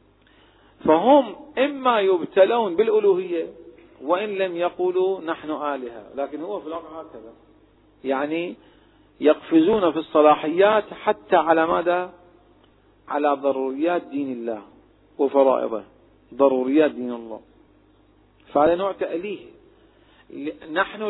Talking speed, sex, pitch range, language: 95 wpm, male, 145-200 Hz, Arabic